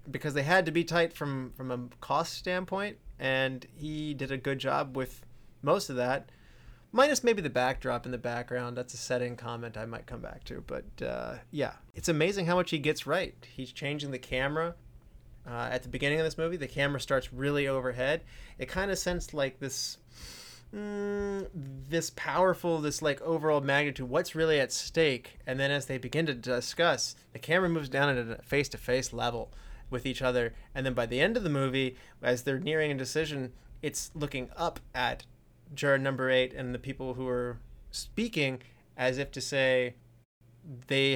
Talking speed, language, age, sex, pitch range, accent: 190 wpm, English, 30-49, male, 125-150 Hz, American